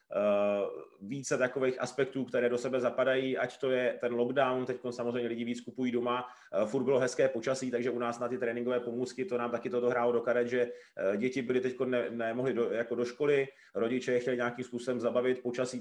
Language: Czech